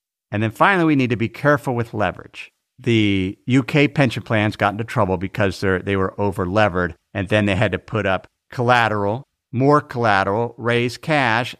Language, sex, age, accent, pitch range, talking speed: English, male, 50-69, American, 110-150 Hz, 175 wpm